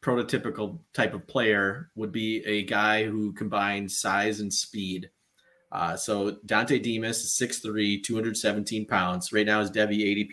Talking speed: 150 wpm